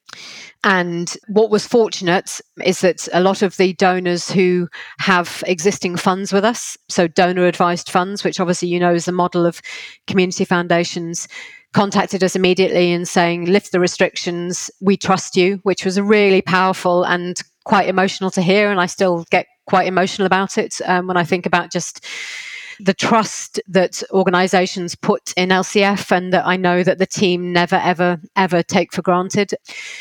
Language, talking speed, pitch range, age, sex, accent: English, 170 wpm, 180-205 Hz, 30-49, female, British